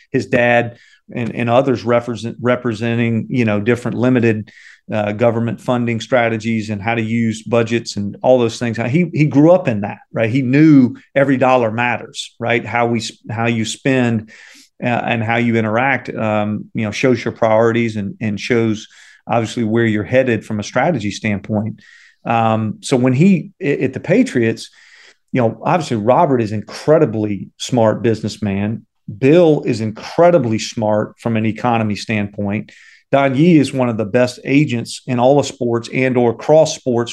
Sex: male